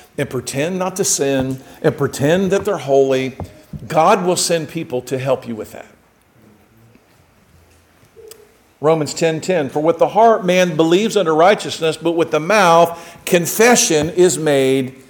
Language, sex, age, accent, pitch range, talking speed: English, male, 50-69, American, 150-205 Hz, 150 wpm